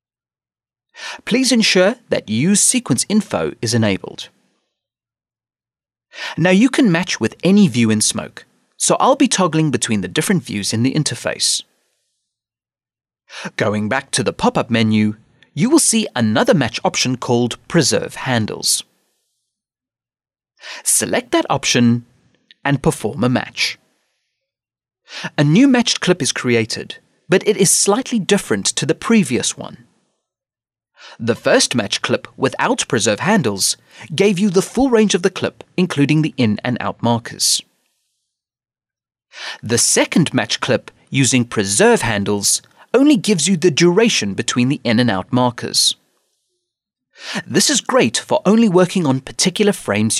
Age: 30-49